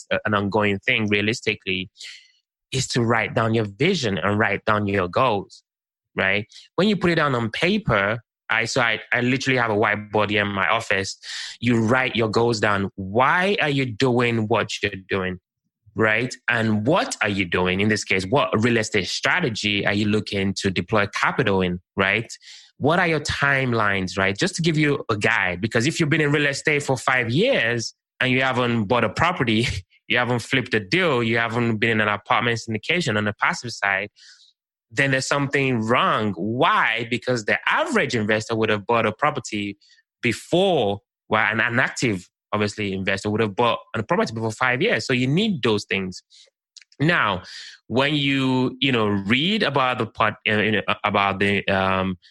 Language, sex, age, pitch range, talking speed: English, male, 20-39, 105-130 Hz, 180 wpm